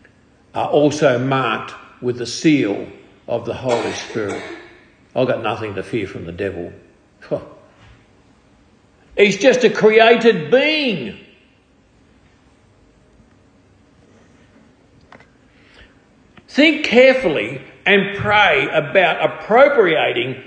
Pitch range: 185-265 Hz